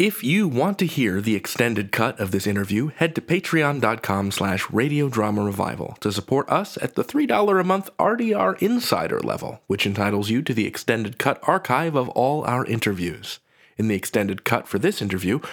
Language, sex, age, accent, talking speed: English, male, 30-49, American, 180 wpm